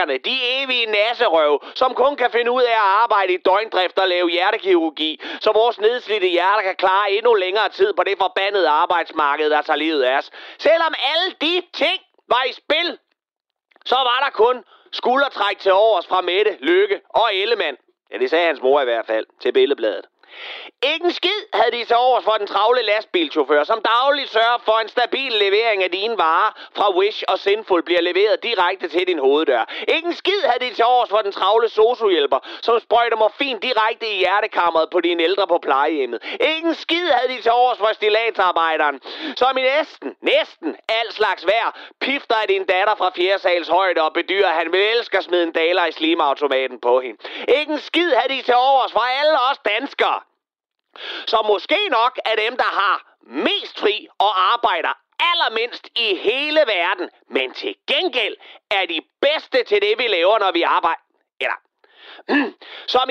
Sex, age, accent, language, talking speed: male, 30-49, native, Danish, 185 wpm